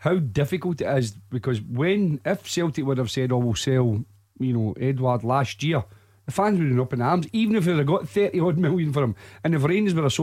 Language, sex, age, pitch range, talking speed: English, male, 40-59, 125-150 Hz, 245 wpm